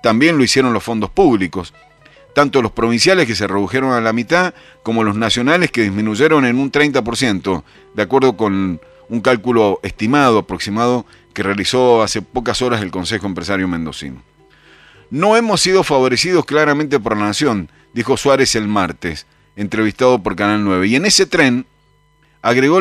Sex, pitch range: male, 105-145 Hz